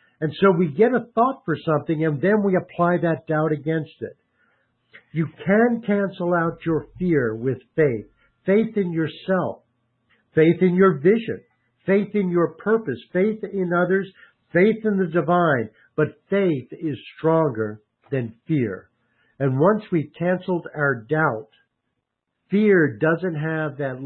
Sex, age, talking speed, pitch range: male, 60-79, 145 wpm, 135-180 Hz